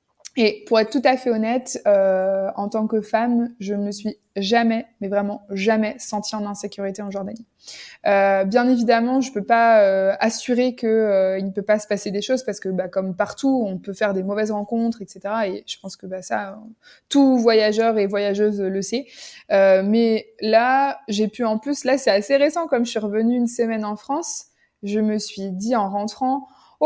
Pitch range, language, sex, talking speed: 205-245 Hz, French, female, 210 wpm